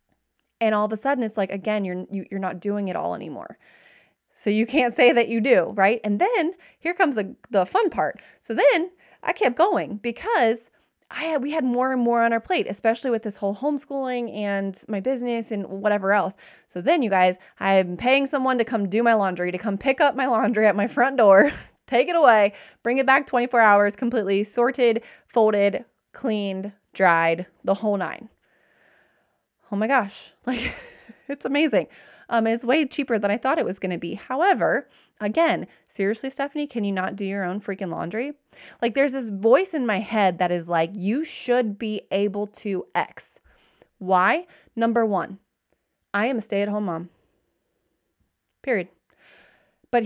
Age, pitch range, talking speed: 20-39, 200-255 Hz, 180 wpm